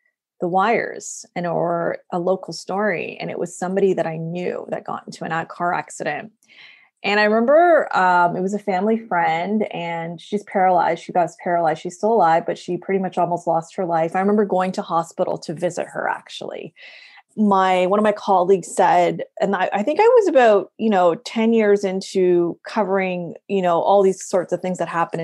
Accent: American